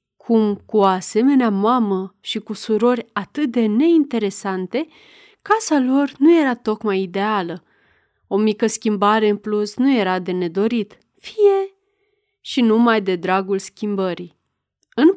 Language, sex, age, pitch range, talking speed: Romanian, female, 30-49, 205-270 Hz, 125 wpm